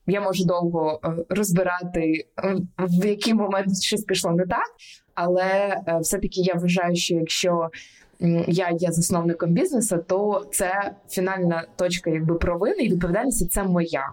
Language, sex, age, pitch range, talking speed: Ukrainian, female, 20-39, 170-200 Hz, 130 wpm